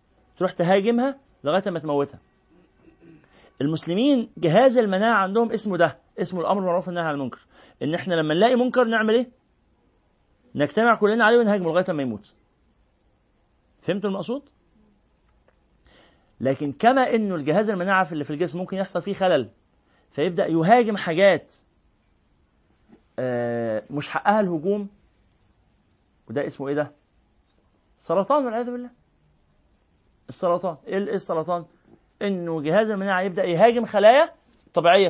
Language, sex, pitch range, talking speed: Arabic, male, 140-215 Hz, 115 wpm